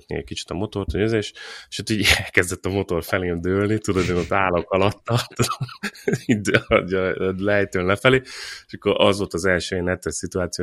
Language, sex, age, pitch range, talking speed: Hungarian, male, 30-49, 80-95 Hz, 175 wpm